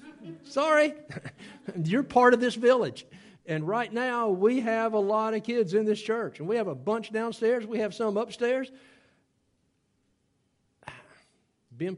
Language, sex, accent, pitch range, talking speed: English, male, American, 120-175 Hz, 145 wpm